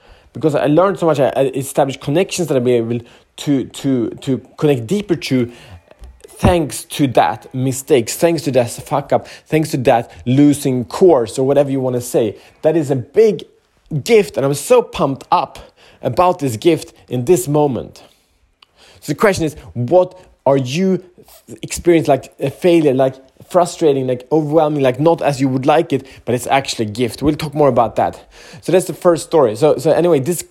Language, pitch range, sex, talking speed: Swedish, 120-160 Hz, male, 185 wpm